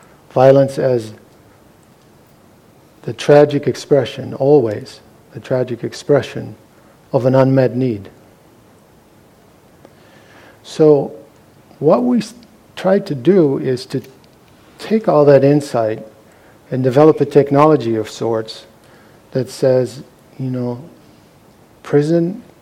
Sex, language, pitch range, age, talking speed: male, English, 115-140 Hz, 50-69, 95 wpm